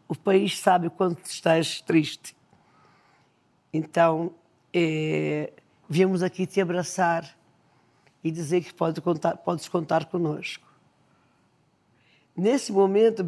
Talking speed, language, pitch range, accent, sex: 105 wpm, Portuguese, 170-225 Hz, Brazilian, female